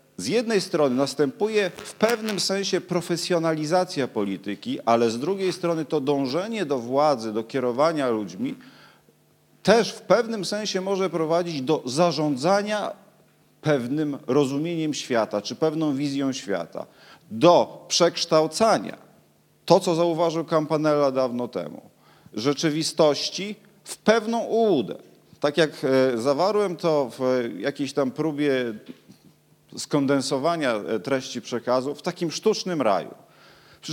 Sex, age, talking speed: male, 40-59, 110 wpm